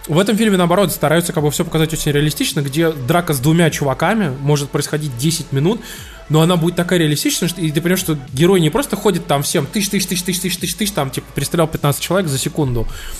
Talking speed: 225 wpm